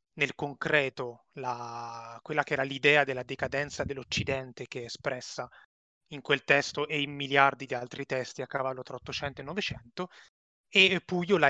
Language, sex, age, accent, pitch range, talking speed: Italian, male, 20-39, native, 125-150 Hz, 155 wpm